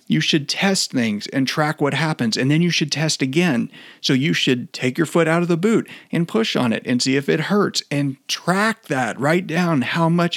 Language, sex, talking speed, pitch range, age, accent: English, male, 230 wpm, 130-170 Hz, 40-59, American